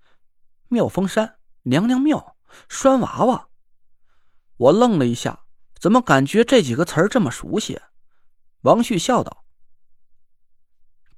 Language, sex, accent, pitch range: Chinese, male, native, 155-225 Hz